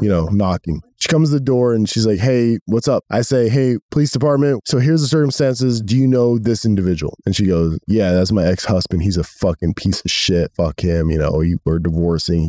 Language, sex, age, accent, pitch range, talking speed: English, male, 20-39, American, 80-105 Hz, 225 wpm